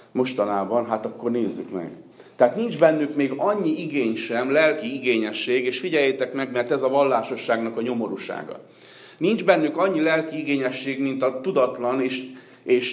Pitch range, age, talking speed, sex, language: 115-155 Hz, 50-69, 155 wpm, male, Hungarian